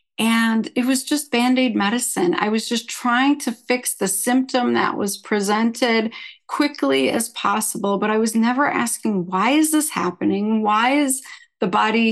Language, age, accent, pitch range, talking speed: English, 40-59, American, 215-265 Hz, 165 wpm